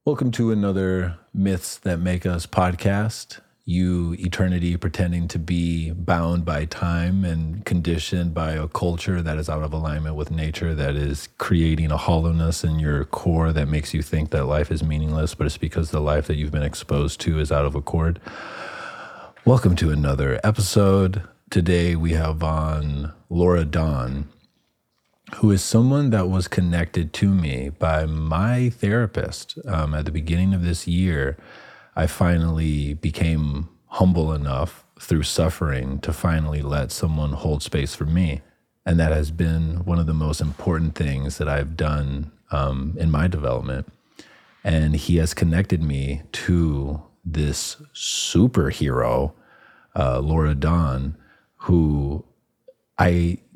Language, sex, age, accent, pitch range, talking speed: English, male, 30-49, American, 75-90 Hz, 145 wpm